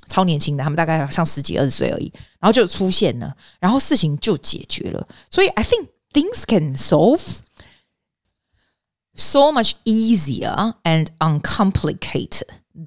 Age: 20-39